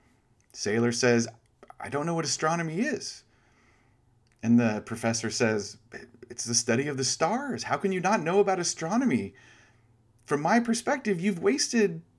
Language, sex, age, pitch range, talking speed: English, male, 30-49, 110-145 Hz, 150 wpm